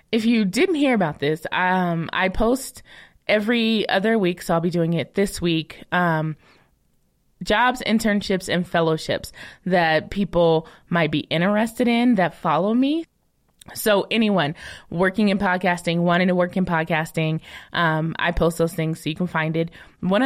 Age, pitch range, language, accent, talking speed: 20-39, 170-210 Hz, English, American, 160 wpm